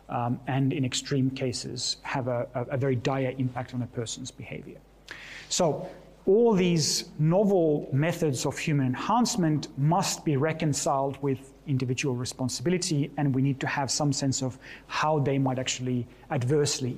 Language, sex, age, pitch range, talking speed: English, male, 30-49, 130-160 Hz, 150 wpm